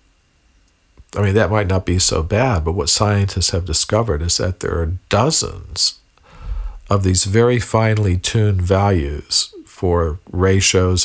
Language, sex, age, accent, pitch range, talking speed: Danish, male, 50-69, American, 85-105 Hz, 140 wpm